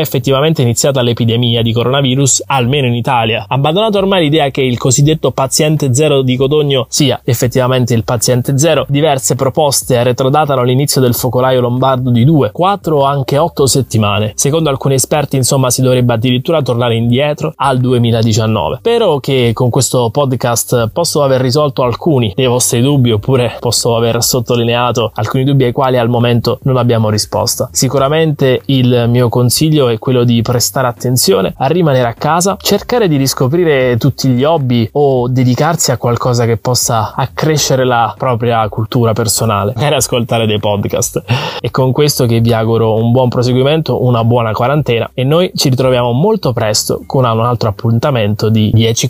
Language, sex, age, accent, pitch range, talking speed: Italian, male, 20-39, native, 120-140 Hz, 160 wpm